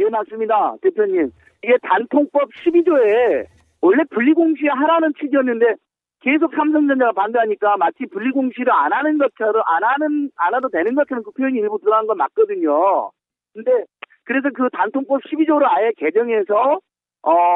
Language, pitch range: Korean, 245-340 Hz